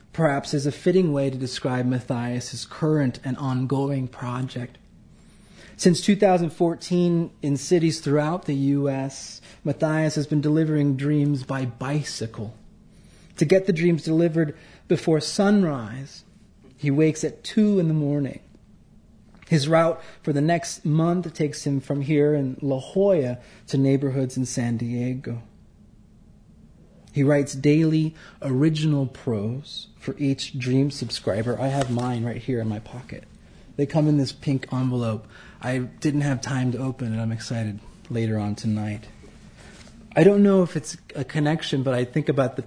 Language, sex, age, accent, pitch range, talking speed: English, male, 30-49, American, 120-155 Hz, 150 wpm